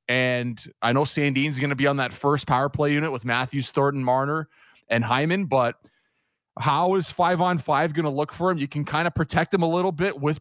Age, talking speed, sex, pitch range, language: 30-49, 230 wpm, male, 135-170 Hz, English